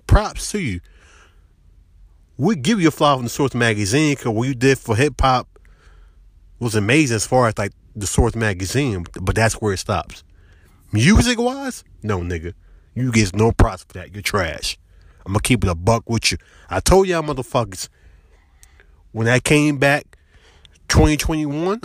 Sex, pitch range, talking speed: male, 85-125 Hz, 170 wpm